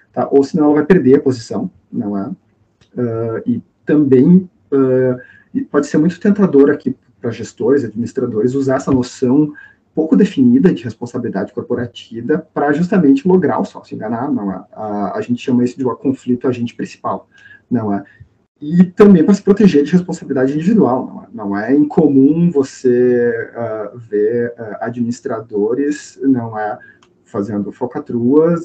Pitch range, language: 120-150 Hz, Portuguese